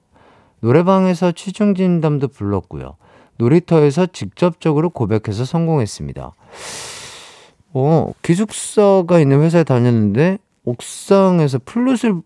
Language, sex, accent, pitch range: Korean, male, native, 110-170 Hz